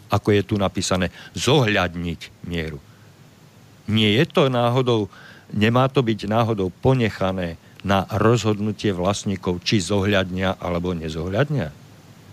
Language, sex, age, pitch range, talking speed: Slovak, male, 50-69, 100-125 Hz, 105 wpm